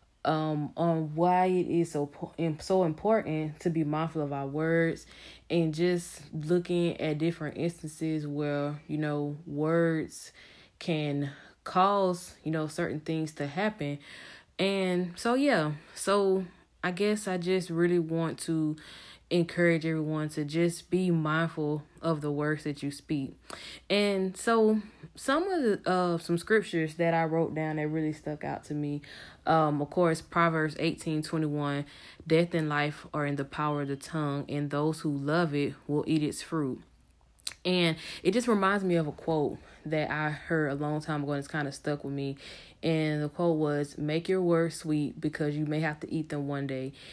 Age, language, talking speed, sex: 10-29, English, 175 wpm, female